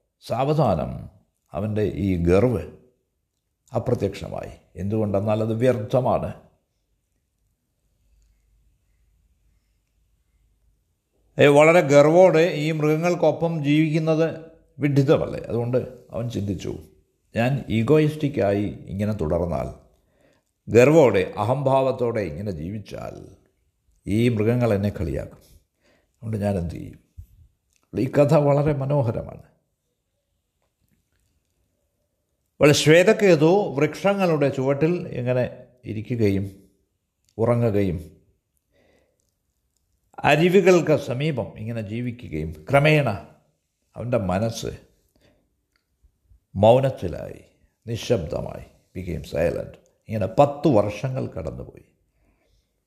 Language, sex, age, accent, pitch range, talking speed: Malayalam, male, 60-79, native, 95-145 Hz, 65 wpm